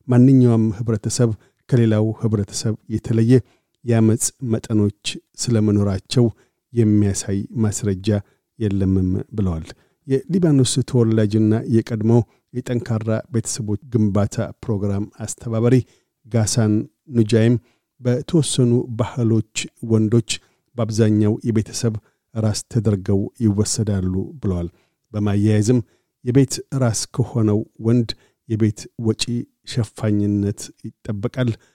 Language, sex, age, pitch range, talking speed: Amharic, male, 50-69, 105-120 Hz, 75 wpm